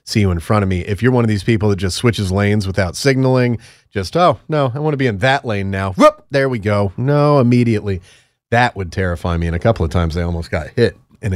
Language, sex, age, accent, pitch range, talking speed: English, male, 30-49, American, 95-115 Hz, 260 wpm